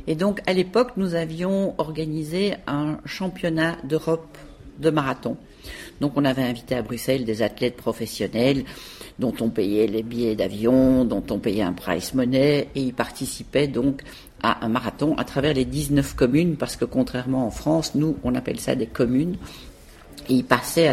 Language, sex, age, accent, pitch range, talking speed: French, female, 50-69, French, 125-160 Hz, 170 wpm